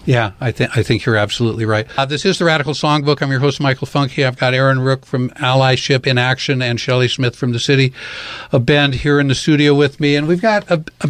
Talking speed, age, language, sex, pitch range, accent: 250 wpm, 60-79, English, male, 125-145 Hz, American